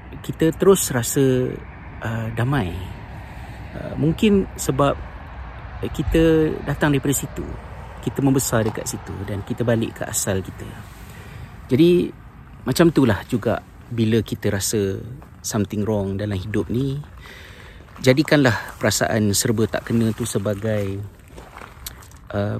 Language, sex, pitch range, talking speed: Malay, male, 95-115 Hz, 110 wpm